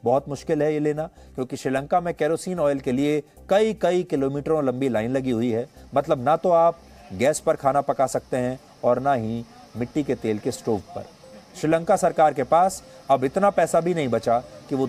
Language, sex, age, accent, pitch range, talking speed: English, male, 30-49, Indian, 140-185 Hz, 200 wpm